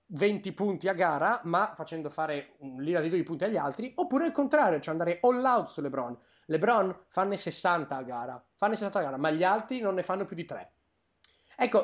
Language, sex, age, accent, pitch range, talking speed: Italian, male, 30-49, native, 155-220 Hz, 215 wpm